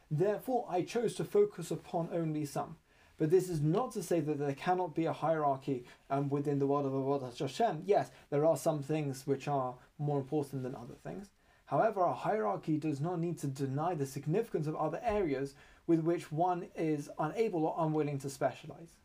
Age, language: 20-39, English